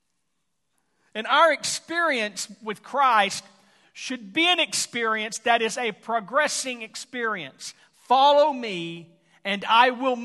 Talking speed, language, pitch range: 110 wpm, English, 190-245 Hz